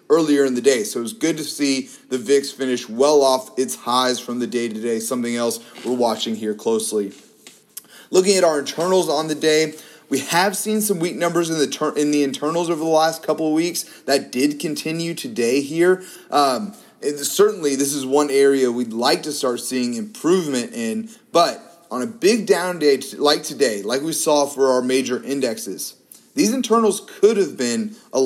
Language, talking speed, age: English, 185 wpm, 30-49